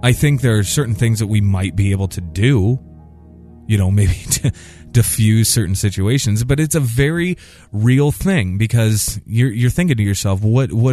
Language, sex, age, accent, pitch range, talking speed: English, male, 20-39, American, 95-115 Hz, 185 wpm